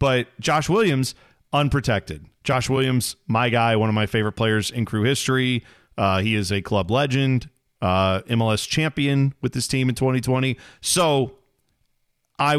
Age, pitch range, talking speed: 40-59, 115-145 Hz, 155 wpm